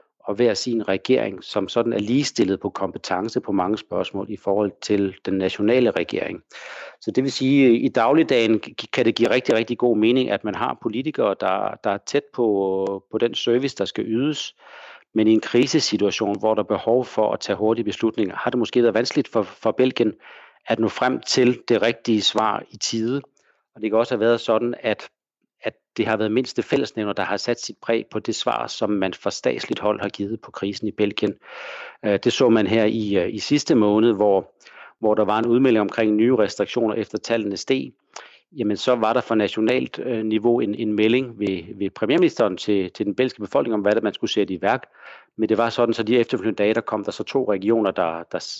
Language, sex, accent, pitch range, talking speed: Danish, male, native, 105-120 Hz, 215 wpm